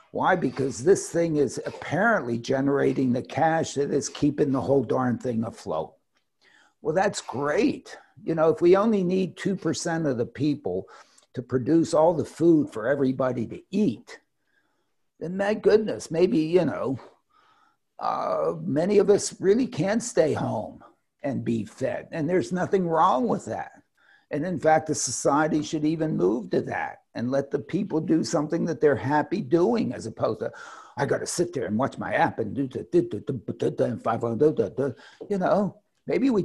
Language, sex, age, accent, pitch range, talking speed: English, male, 60-79, American, 140-185 Hz, 165 wpm